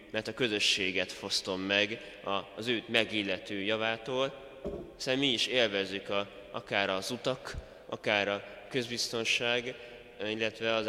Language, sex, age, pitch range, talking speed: Hungarian, male, 20-39, 95-120 Hz, 115 wpm